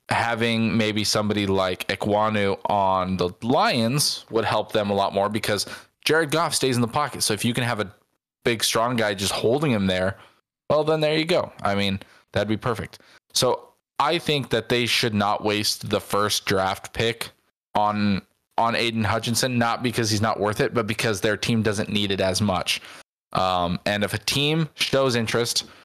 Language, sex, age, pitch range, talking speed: English, male, 20-39, 100-120 Hz, 190 wpm